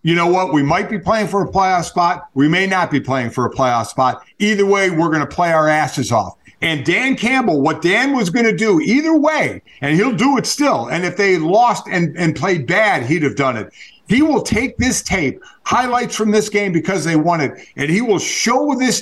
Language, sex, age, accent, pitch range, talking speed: English, male, 50-69, American, 160-230 Hz, 235 wpm